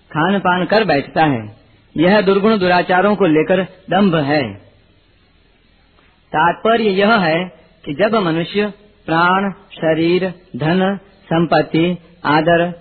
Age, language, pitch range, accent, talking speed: 40-59, Hindi, 135-195 Hz, native, 110 wpm